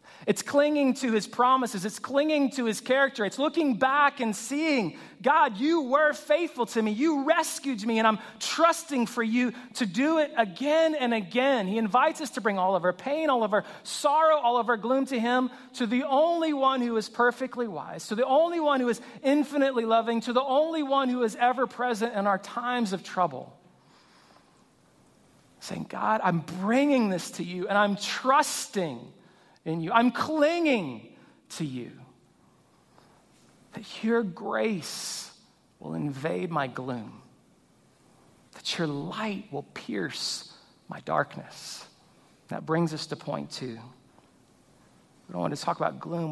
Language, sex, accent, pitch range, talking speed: English, male, American, 190-270 Hz, 165 wpm